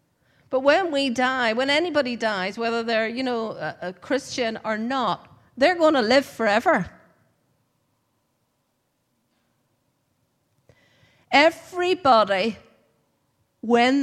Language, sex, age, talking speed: English, female, 50-69, 95 wpm